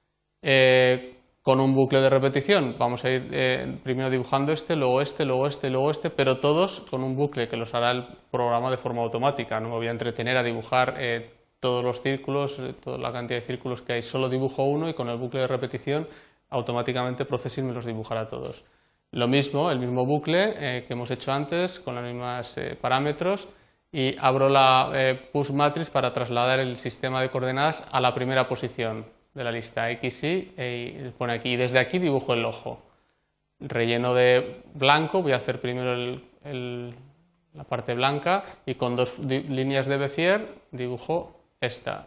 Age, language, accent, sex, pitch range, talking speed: 20-39, Spanish, Spanish, male, 125-145 Hz, 180 wpm